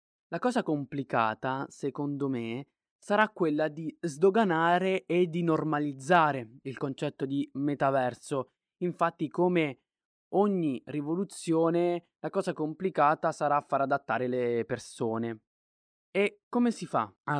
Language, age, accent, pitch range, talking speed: Italian, 20-39, native, 135-170 Hz, 115 wpm